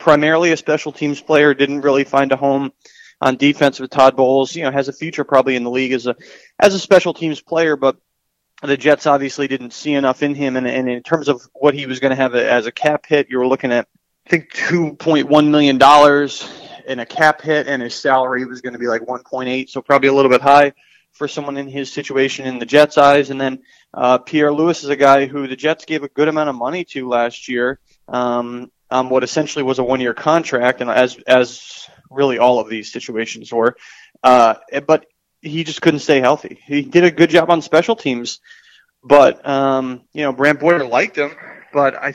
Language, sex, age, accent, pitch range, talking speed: English, male, 30-49, American, 125-150 Hz, 220 wpm